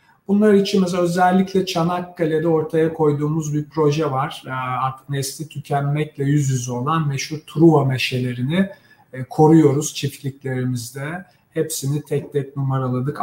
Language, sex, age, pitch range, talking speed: Turkish, male, 50-69, 130-165 Hz, 115 wpm